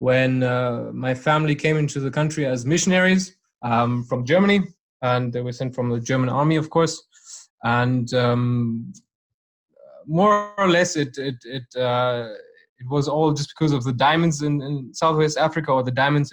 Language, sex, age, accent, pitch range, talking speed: English, male, 20-39, German, 125-155 Hz, 180 wpm